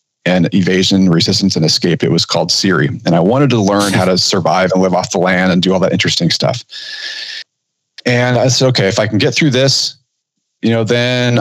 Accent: American